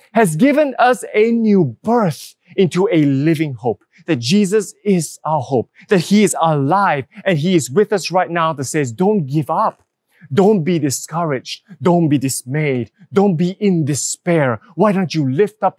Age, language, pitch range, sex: 30-49, English, 165-220 Hz, male